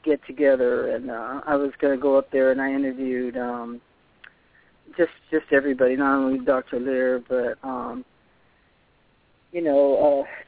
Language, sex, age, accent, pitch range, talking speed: English, male, 40-59, American, 140-175 Hz, 150 wpm